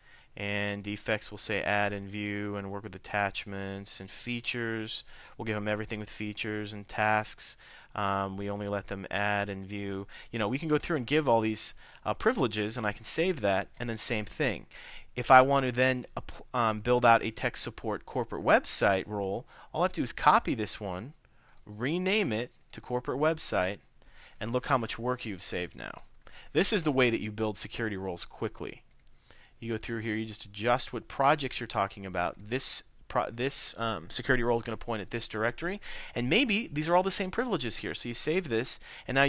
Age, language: 30-49, English